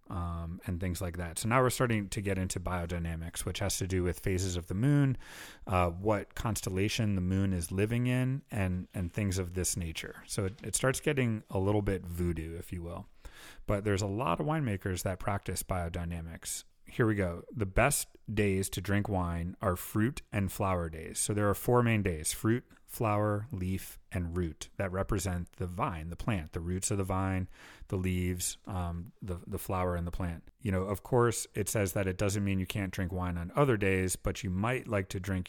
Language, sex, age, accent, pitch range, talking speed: English, male, 30-49, American, 90-105 Hz, 210 wpm